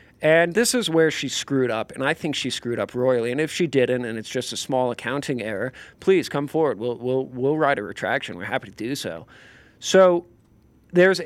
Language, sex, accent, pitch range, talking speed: English, male, American, 120-155 Hz, 220 wpm